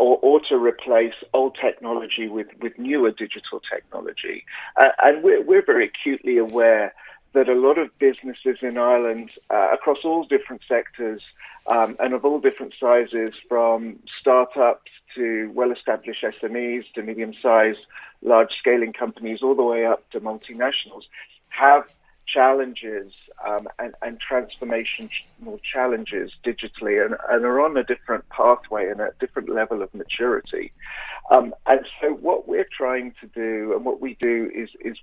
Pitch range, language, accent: 115-165 Hz, English, British